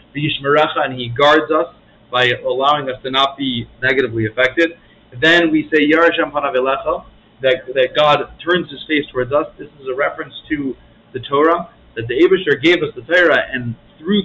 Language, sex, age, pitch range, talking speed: English, male, 40-59, 125-170 Hz, 165 wpm